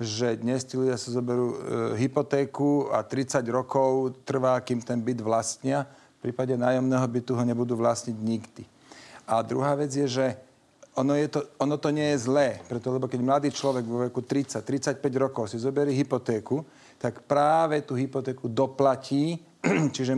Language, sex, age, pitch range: Slovak, male, 40-59, 125-145 Hz